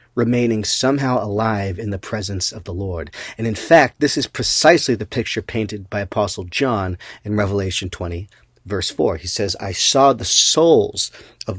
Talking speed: 170 wpm